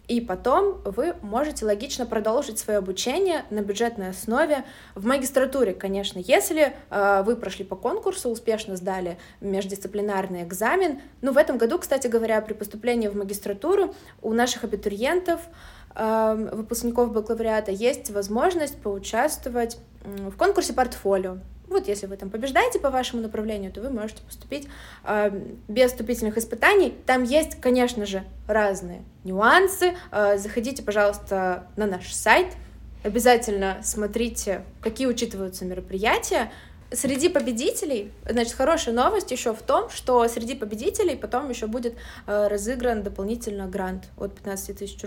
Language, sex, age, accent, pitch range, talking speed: Russian, female, 20-39, native, 205-265 Hz, 125 wpm